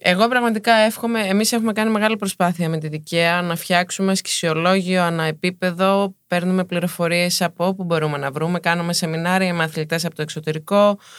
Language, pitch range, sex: Greek, 165-200 Hz, female